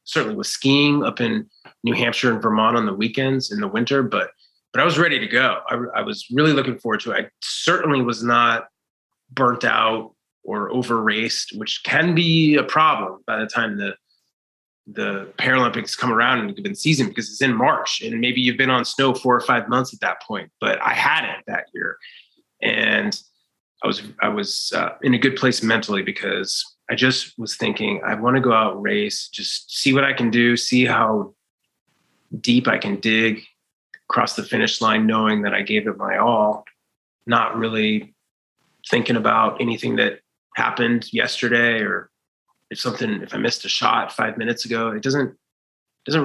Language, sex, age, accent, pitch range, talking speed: English, male, 20-39, American, 115-145 Hz, 190 wpm